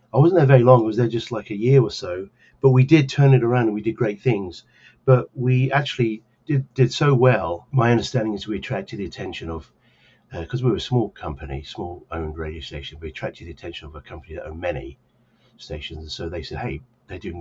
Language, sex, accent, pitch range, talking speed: English, male, British, 85-125 Hz, 240 wpm